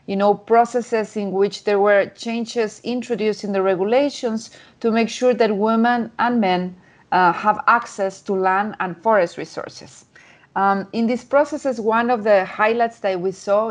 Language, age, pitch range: English, 30-49, 195-225 Hz